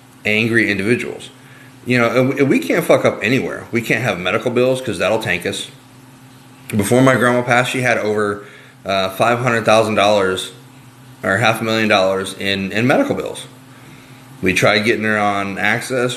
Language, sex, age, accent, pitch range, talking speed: English, male, 30-49, American, 105-130 Hz, 165 wpm